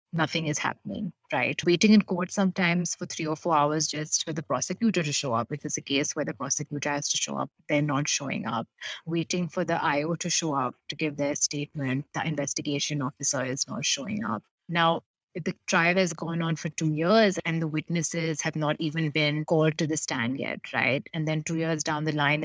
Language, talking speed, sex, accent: English, 220 wpm, female, Indian